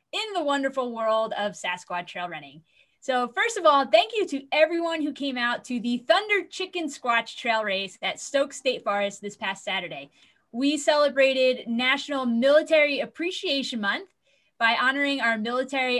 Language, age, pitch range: English, 20-39, 215-280 Hz